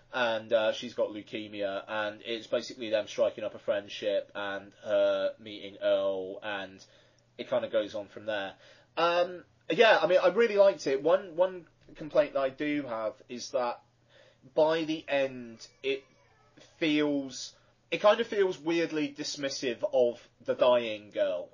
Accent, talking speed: British, 160 wpm